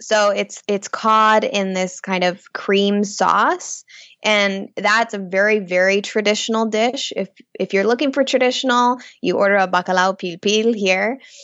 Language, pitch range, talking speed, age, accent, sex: English, 190-230 Hz, 155 wpm, 10-29, American, female